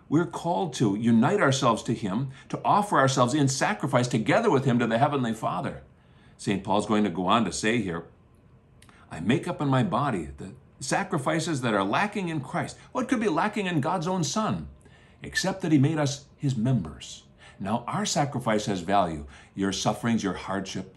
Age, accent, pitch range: 50-69, American, 115-165 Hz